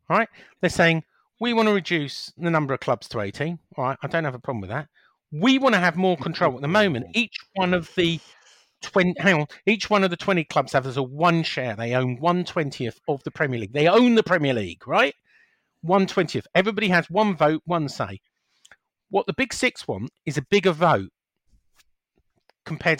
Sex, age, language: male, 50-69, English